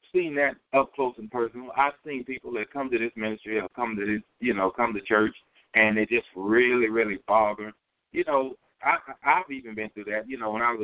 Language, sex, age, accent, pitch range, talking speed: English, male, 60-79, American, 110-150 Hz, 240 wpm